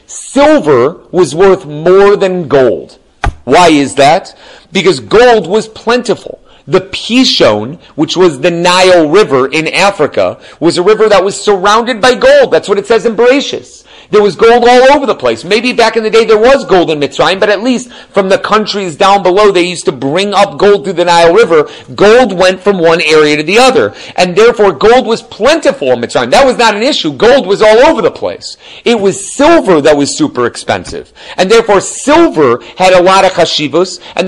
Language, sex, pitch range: English, male, 175-225 Hz